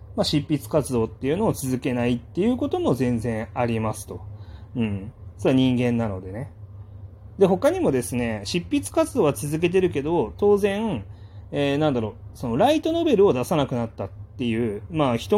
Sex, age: male, 30-49